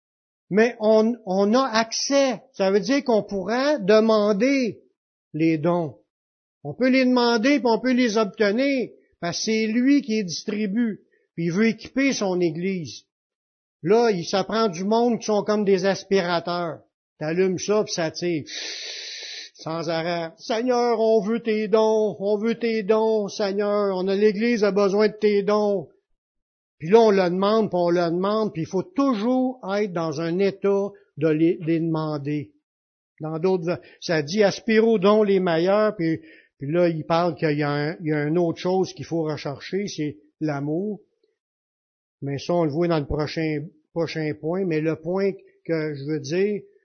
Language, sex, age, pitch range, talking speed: French, male, 60-79, 165-225 Hz, 180 wpm